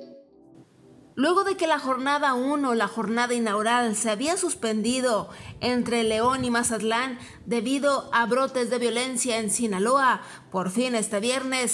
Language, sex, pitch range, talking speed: Spanish, female, 235-290 Hz, 140 wpm